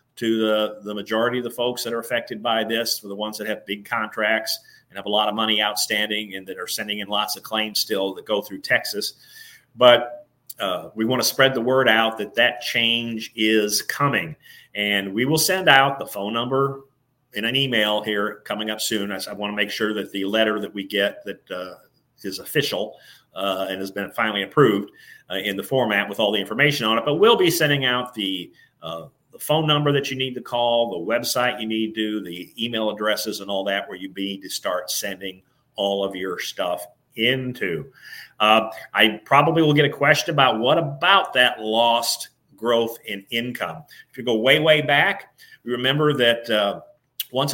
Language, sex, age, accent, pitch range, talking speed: English, male, 40-59, American, 105-135 Hz, 205 wpm